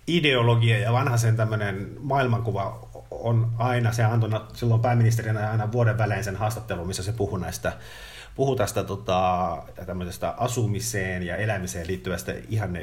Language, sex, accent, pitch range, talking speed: Finnish, male, native, 95-115 Hz, 130 wpm